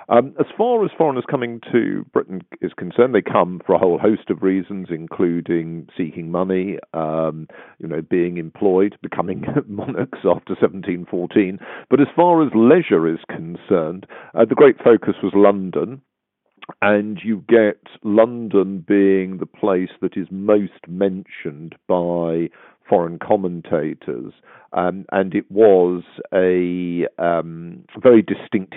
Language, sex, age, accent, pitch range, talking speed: English, male, 50-69, British, 85-105 Hz, 135 wpm